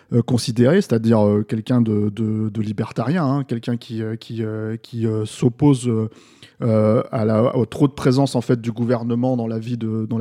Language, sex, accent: French, male, French